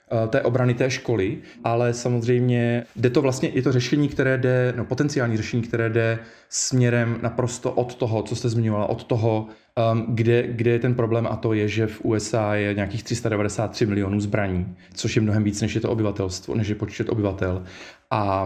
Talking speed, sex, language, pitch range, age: 185 wpm, male, Slovak, 105-120 Hz, 20-39